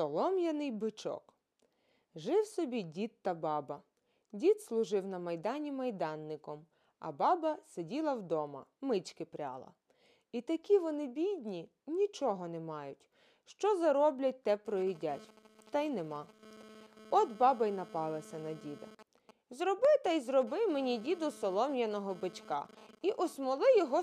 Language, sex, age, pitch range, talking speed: Ukrainian, female, 20-39, 185-300 Hz, 120 wpm